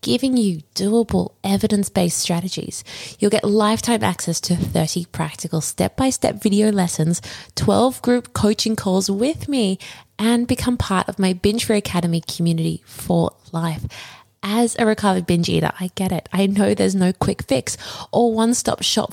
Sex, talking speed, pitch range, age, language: female, 155 wpm, 170-215 Hz, 20-39, English